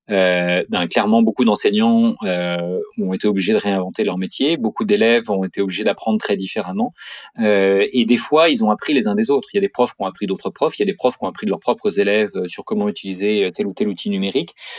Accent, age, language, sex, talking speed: French, 30-49, French, male, 250 wpm